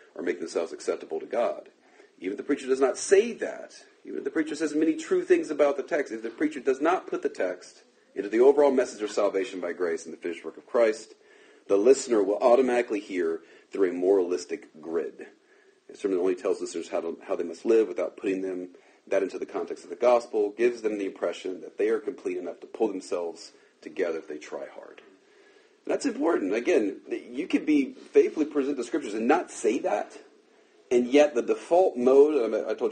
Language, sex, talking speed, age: English, male, 210 wpm, 40-59